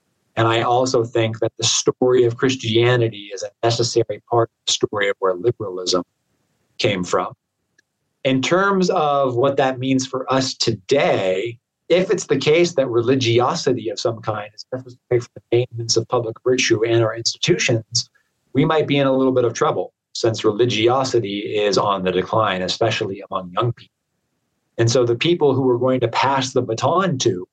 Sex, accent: male, American